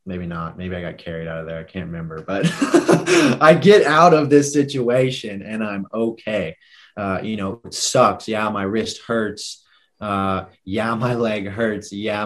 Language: English